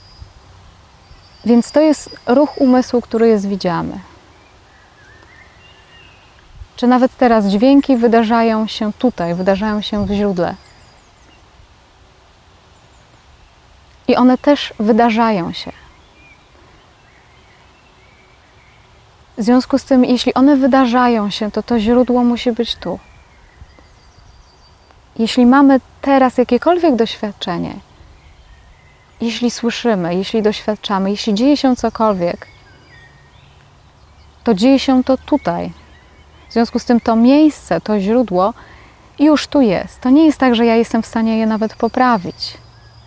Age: 20-39